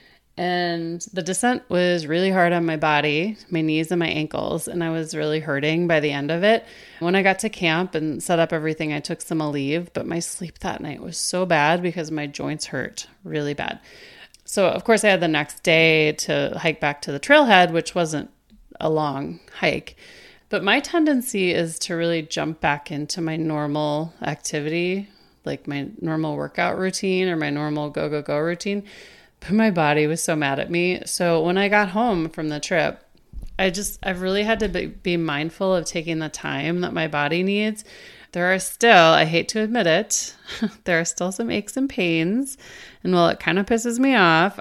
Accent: American